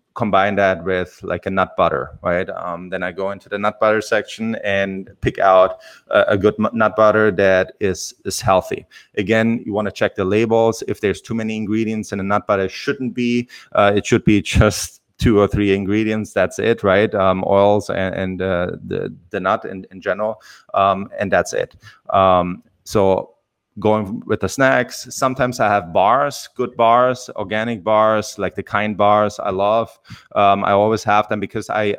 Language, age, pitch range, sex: English, 30-49, 95-110 Hz, male